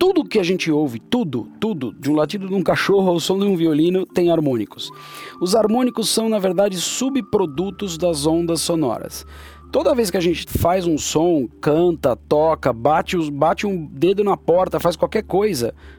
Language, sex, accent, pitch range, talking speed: Portuguese, male, Brazilian, 150-195 Hz, 180 wpm